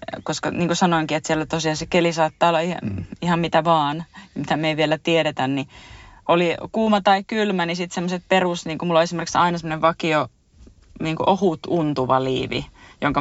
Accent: native